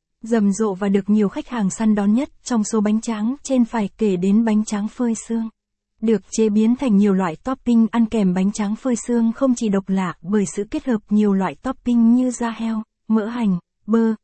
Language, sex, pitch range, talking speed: Vietnamese, female, 205-235 Hz, 220 wpm